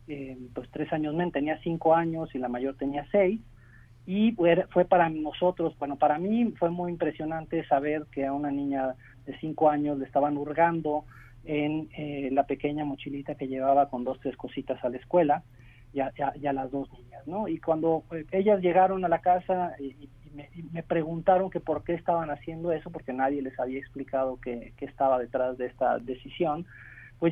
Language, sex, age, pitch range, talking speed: Spanish, male, 40-59, 135-170 Hz, 195 wpm